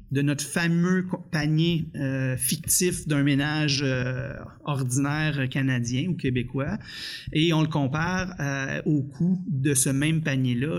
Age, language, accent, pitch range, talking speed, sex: 30-49, French, Canadian, 135-165 Hz, 135 wpm, male